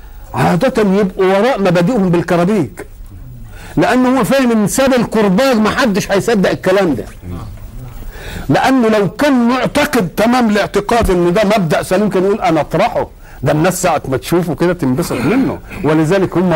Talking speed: 140 wpm